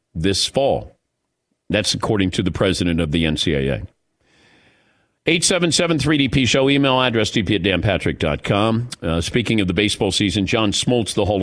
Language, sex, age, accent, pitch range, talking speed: English, male, 50-69, American, 100-150 Hz, 130 wpm